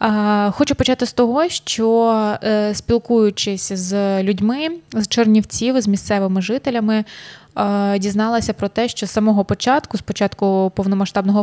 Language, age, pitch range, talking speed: Ukrainian, 20-39, 195-225 Hz, 120 wpm